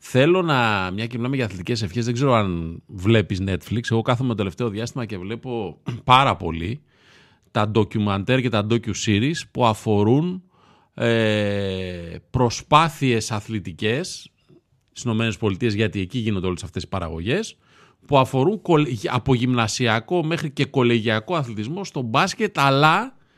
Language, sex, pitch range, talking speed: Greek, male, 110-155 Hz, 130 wpm